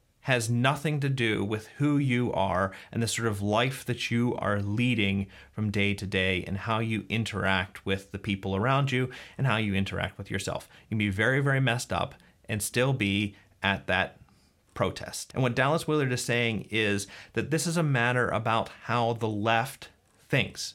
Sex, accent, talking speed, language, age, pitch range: male, American, 190 wpm, English, 30-49, 100-130 Hz